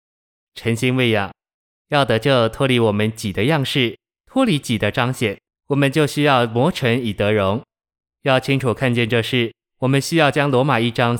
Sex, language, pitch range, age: male, Chinese, 110-135 Hz, 20-39